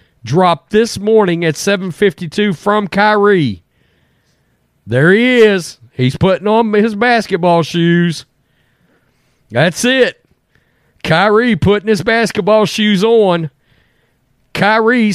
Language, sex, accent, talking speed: English, male, American, 100 wpm